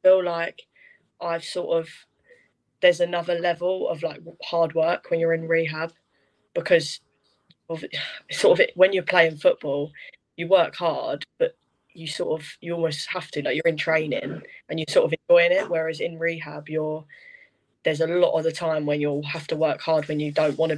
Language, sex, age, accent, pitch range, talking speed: English, female, 10-29, British, 160-180 Hz, 190 wpm